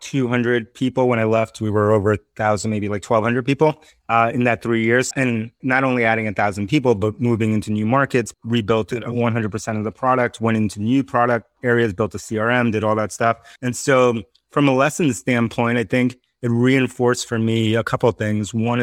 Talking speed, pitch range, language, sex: 210 wpm, 110-125 Hz, English, male